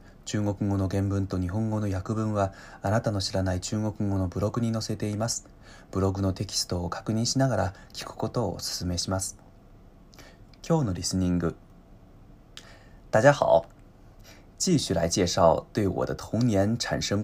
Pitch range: 95-115 Hz